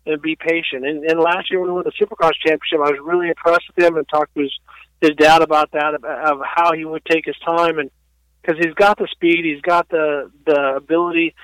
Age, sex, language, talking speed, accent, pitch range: 50-69, male, English, 230 wpm, American, 150-180 Hz